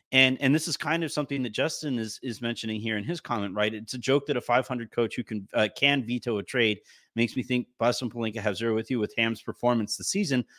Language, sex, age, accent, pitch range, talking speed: English, male, 30-49, American, 110-140 Hz, 260 wpm